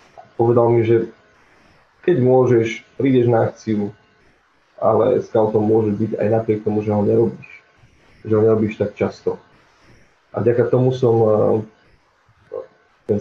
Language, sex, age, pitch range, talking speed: Slovak, male, 20-39, 110-120 Hz, 125 wpm